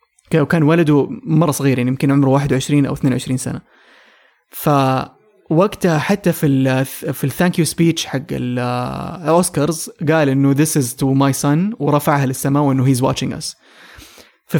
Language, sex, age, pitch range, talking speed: English, male, 20-39, 140-175 Hz, 135 wpm